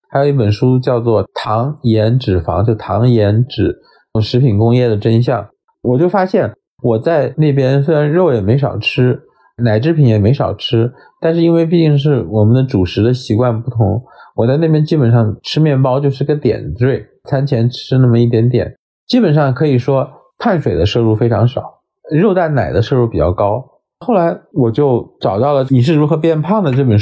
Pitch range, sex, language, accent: 115-155 Hz, male, Chinese, native